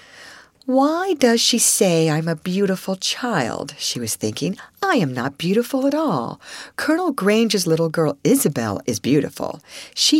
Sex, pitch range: female, 150-235 Hz